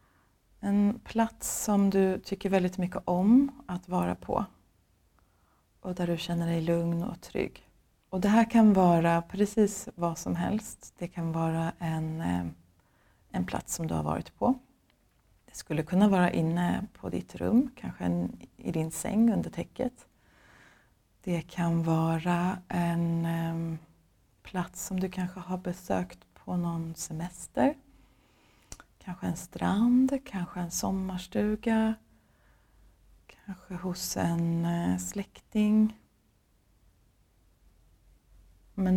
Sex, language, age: female, Swedish, 30-49